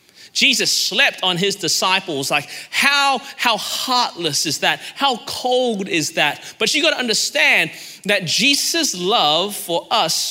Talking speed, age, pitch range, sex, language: 140 wpm, 30-49, 200-310 Hz, male, English